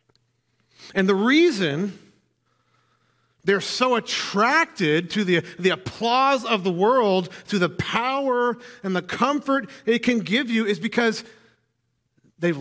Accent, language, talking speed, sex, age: American, English, 125 wpm, male, 40-59